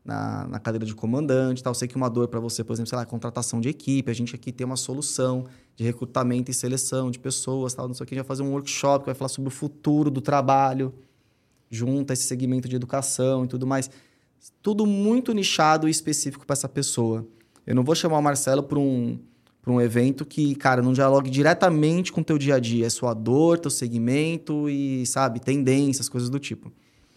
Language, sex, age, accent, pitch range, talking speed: Portuguese, male, 20-39, Brazilian, 125-155 Hz, 220 wpm